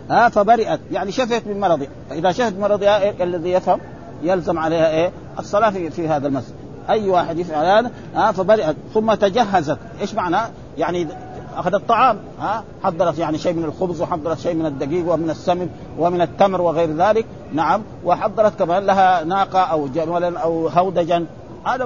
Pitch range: 165-195 Hz